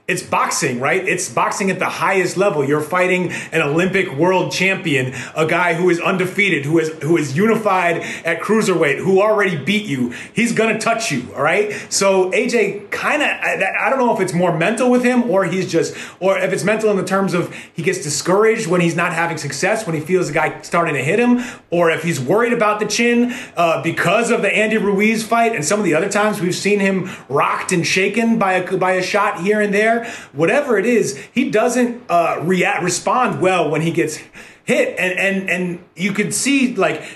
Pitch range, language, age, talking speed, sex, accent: 170-215 Hz, English, 30-49, 215 wpm, male, American